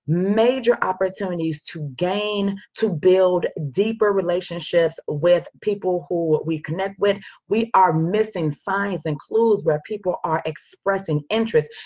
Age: 30-49